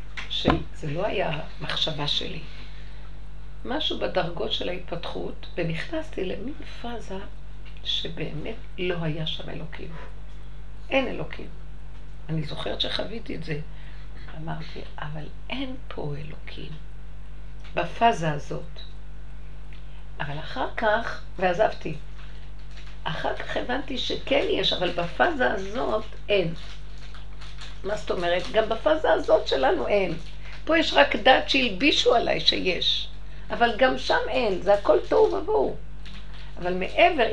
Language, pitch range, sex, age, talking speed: Hebrew, 160-240 Hz, female, 50-69, 110 wpm